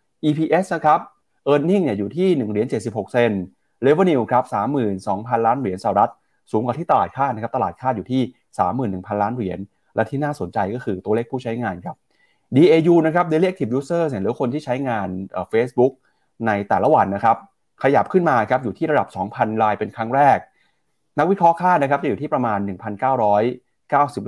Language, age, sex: Thai, 30-49, male